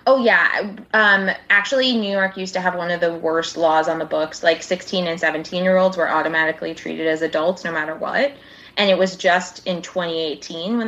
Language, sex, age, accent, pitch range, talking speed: English, female, 20-39, American, 160-215 Hz, 210 wpm